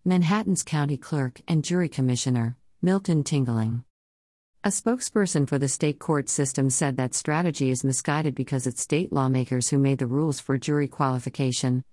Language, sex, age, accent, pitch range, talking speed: English, female, 50-69, American, 130-155 Hz, 155 wpm